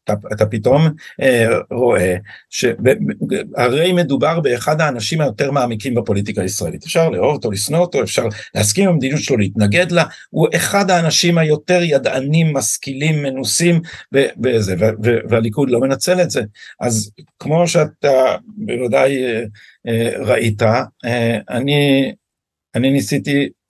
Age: 50-69